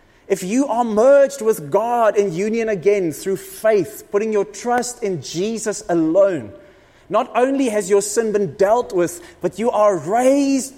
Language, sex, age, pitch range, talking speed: English, male, 30-49, 175-220 Hz, 160 wpm